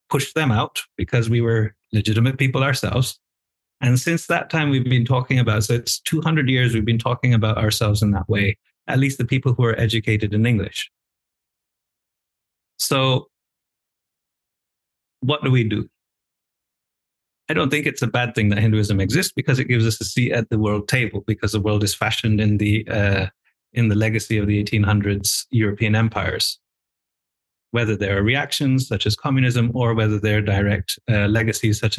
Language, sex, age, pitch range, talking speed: English, male, 30-49, 105-130 Hz, 180 wpm